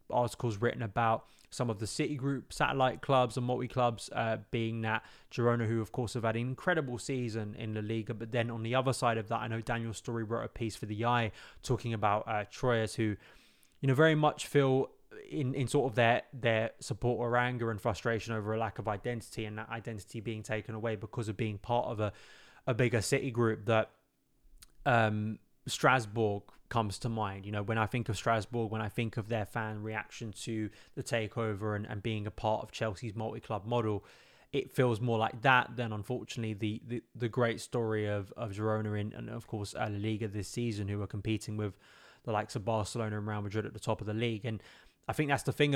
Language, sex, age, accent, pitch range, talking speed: English, male, 20-39, British, 110-120 Hz, 220 wpm